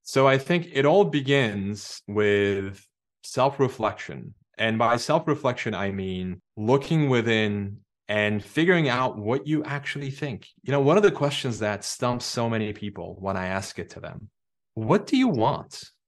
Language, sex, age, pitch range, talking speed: English, male, 30-49, 100-130 Hz, 170 wpm